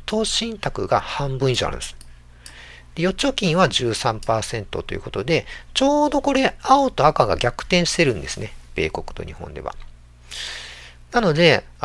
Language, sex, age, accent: Japanese, male, 50-69, native